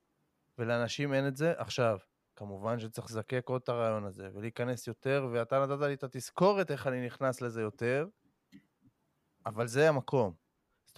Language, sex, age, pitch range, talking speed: Hebrew, male, 20-39, 120-150 Hz, 160 wpm